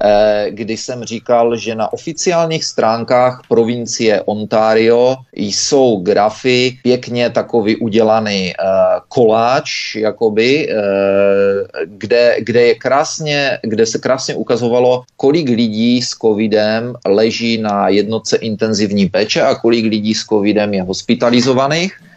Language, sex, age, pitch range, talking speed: Czech, male, 30-49, 110-130 Hz, 100 wpm